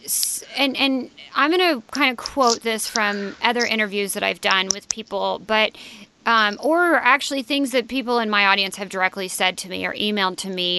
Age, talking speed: 30-49, 200 wpm